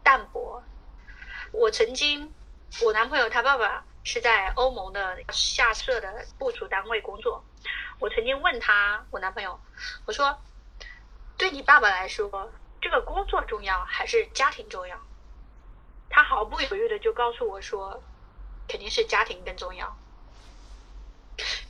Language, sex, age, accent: Chinese, female, 30-49, native